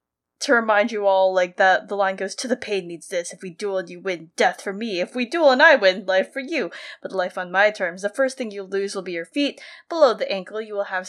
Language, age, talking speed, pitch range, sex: English, 20-39, 275 wpm, 200-290 Hz, female